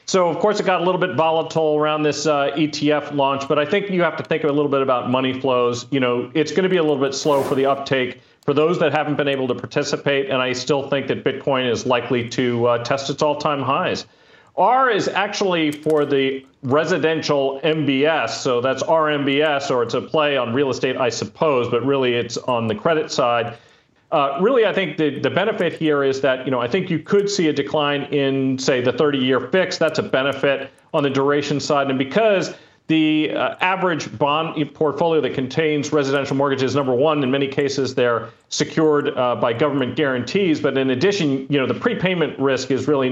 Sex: male